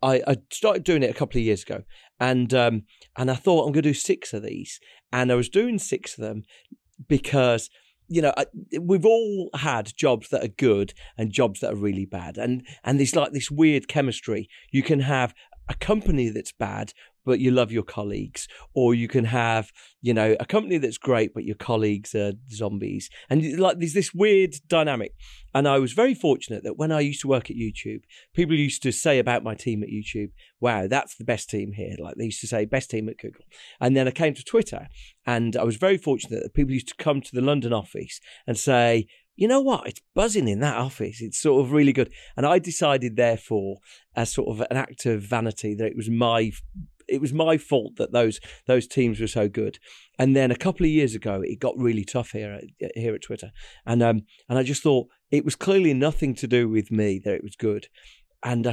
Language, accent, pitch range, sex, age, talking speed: English, British, 110-145 Hz, male, 40-59, 220 wpm